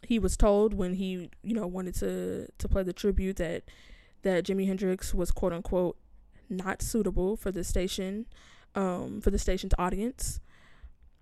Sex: female